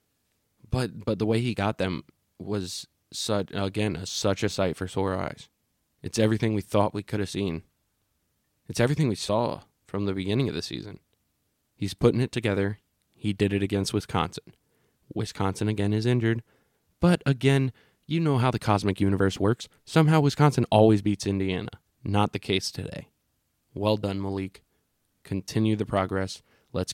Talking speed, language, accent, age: 160 wpm, English, American, 20-39